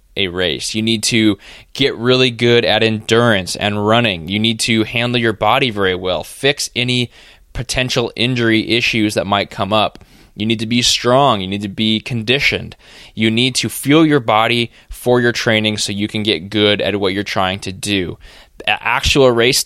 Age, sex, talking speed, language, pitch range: 20-39, male, 190 wpm, English, 105-125 Hz